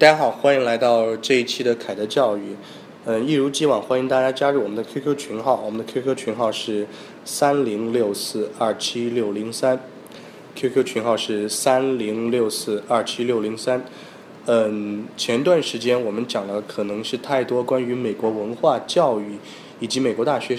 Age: 20-39